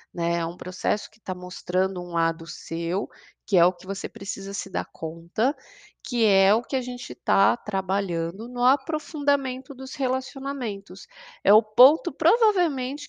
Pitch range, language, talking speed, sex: 175-240 Hz, Portuguese, 155 wpm, female